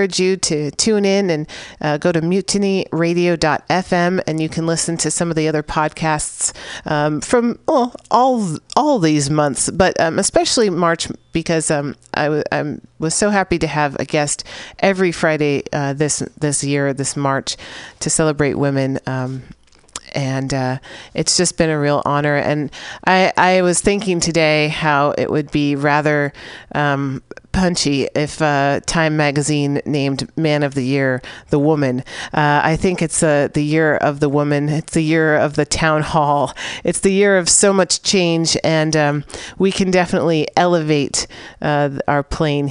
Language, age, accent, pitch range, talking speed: English, 40-59, American, 145-170 Hz, 170 wpm